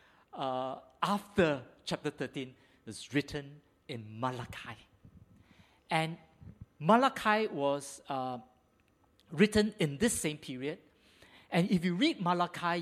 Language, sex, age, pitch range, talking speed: English, male, 50-69, 120-180 Hz, 105 wpm